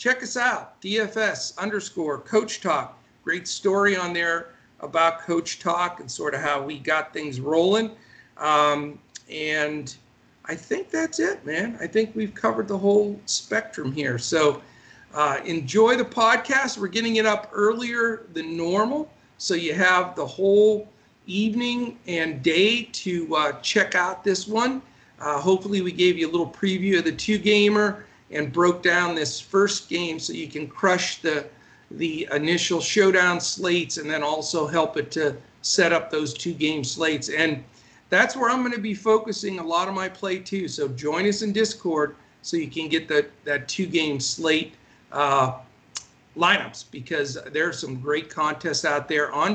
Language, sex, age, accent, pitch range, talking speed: English, male, 50-69, American, 150-200 Hz, 170 wpm